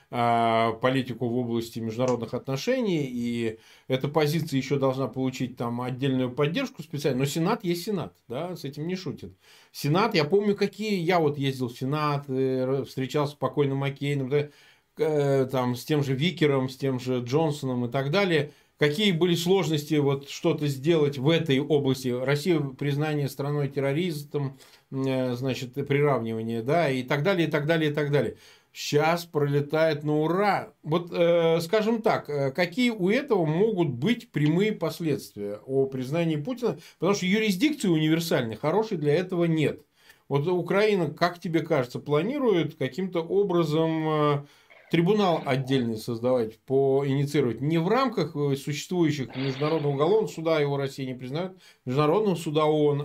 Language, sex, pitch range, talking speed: Russian, male, 135-170 Hz, 145 wpm